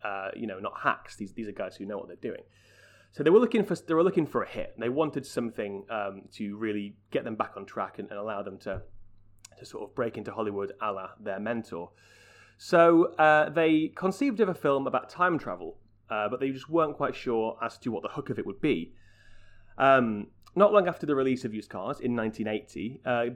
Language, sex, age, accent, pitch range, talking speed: English, male, 30-49, British, 105-135 Hz, 225 wpm